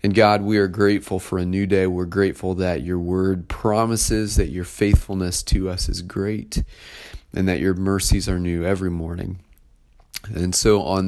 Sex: male